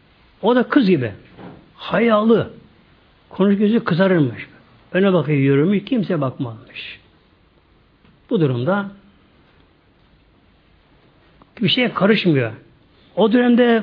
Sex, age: male, 60-79